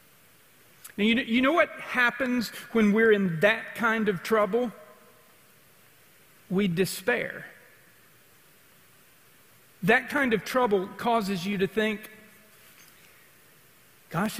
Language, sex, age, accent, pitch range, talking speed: English, male, 50-69, American, 200-255 Hz, 105 wpm